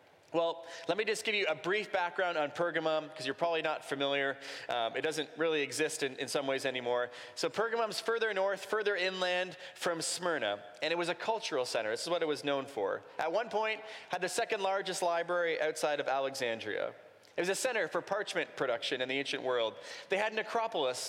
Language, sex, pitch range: English, male, 150-210 Hz